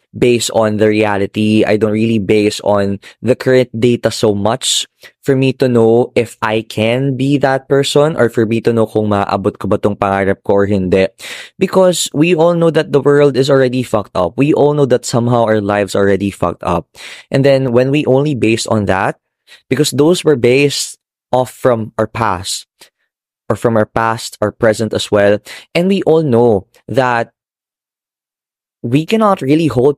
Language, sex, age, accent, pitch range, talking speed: Filipino, male, 20-39, native, 105-135 Hz, 180 wpm